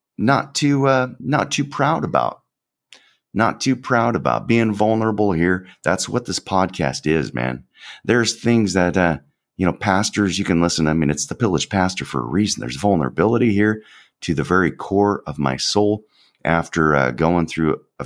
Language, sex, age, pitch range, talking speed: English, male, 30-49, 75-105 Hz, 185 wpm